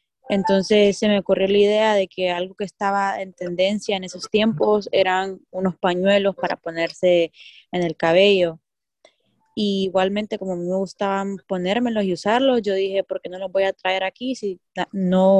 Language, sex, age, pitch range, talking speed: English, female, 20-39, 180-210 Hz, 170 wpm